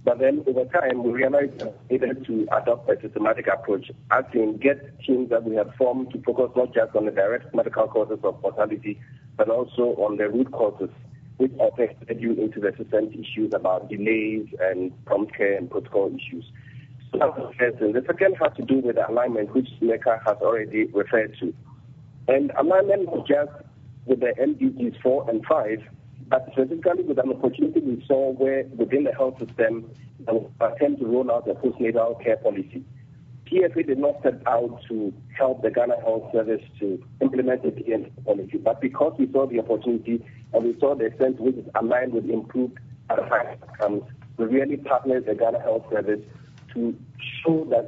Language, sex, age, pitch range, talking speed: English, male, 50-69, 115-135 Hz, 175 wpm